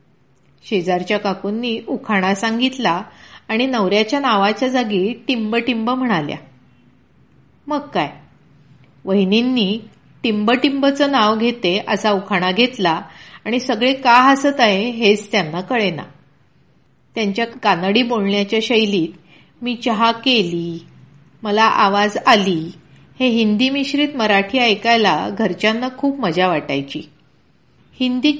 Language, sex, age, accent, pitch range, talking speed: Marathi, female, 40-59, native, 195-245 Hz, 100 wpm